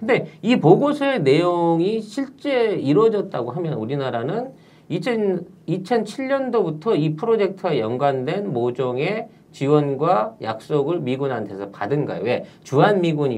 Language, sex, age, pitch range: Korean, male, 40-59, 145-225 Hz